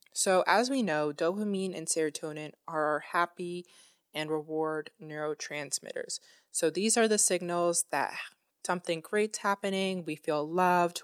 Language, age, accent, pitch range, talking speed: English, 20-39, American, 155-180 Hz, 135 wpm